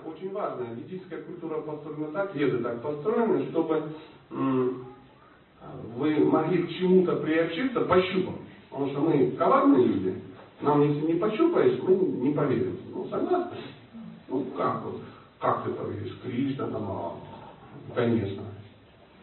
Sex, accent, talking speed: male, native, 125 wpm